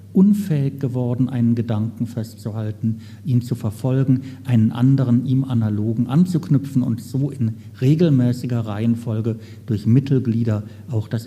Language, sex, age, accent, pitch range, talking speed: German, male, 50-69, German, 110-130 Hz, 115 wpm